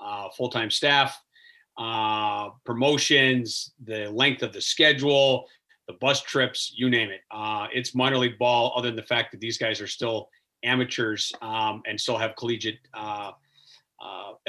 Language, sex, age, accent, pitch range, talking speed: English, male, 40-59, American, 115-135 Hz, 155 wpm